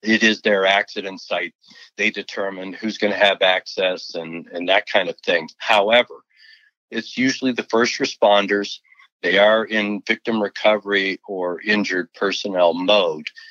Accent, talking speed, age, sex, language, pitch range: American, 145 wpm, 60-79, male, English, 95-120 Hz